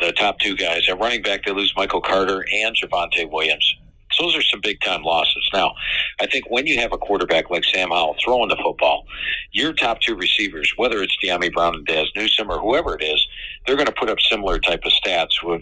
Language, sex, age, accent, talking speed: English, male, 50-69, American, 230 wpm